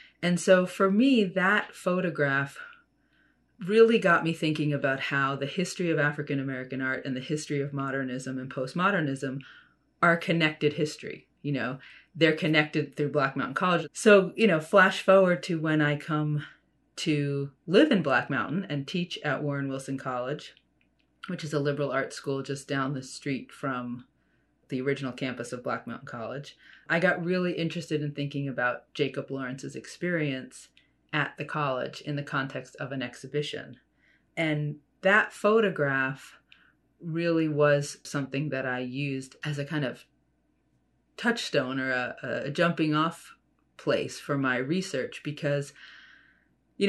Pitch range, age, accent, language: 135-170 Hz, 30-49, American, English